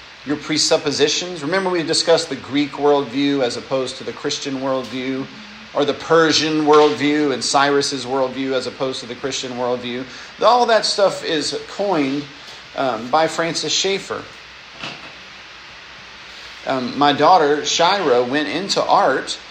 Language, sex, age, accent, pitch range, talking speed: English, male, 40-59, American, 130-160 Hz, 130 wpm